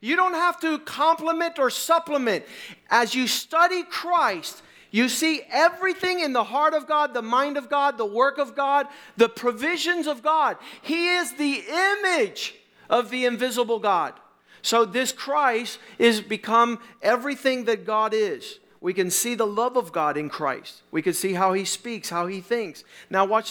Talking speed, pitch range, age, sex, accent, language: 175 wpm, 220-300 Hz, 50-69, male, American, English